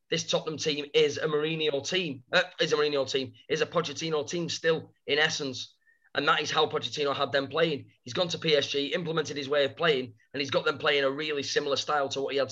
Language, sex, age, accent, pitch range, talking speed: English, male, 30-49, British, 135-180 Hz, 235 wpm